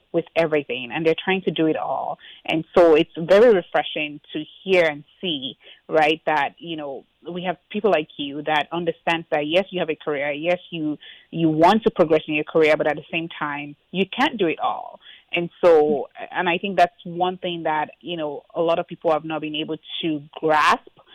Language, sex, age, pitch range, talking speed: English, female, 30-49, 155-180 Hz, 215 wpm